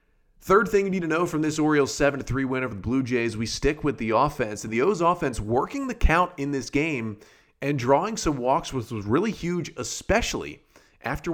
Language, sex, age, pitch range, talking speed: English, male, 30-49, 110-145 Hz, 205 wpm